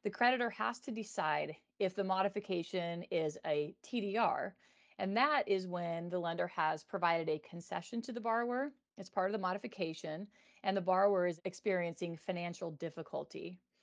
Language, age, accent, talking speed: English, 40-59, American, 155 wpm